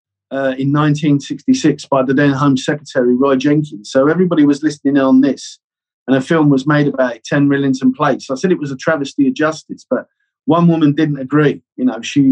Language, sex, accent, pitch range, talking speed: English, male, British, 135-165 Hz, 200 wpm